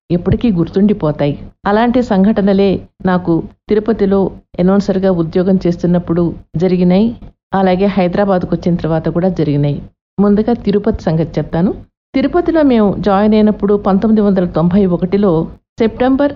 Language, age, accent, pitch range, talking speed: English, 50-69, Indian, 180-215 Hz, 115 wpm